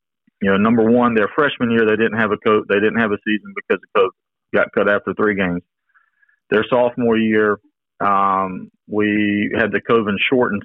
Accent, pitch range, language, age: American, 100-110 Hz, English, 40-59